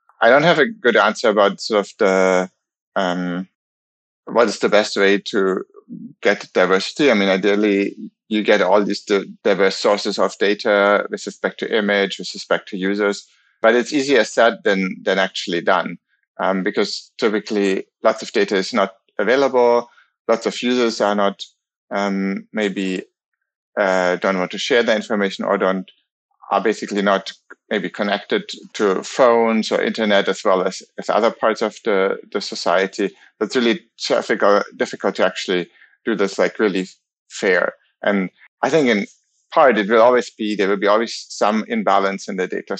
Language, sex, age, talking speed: English, male, 30-49, 170 wpm